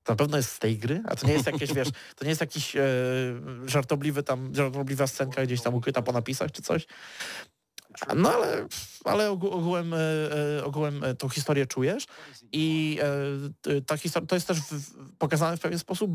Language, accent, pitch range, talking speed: Polish, native, 115-150 Hz, 155 wpm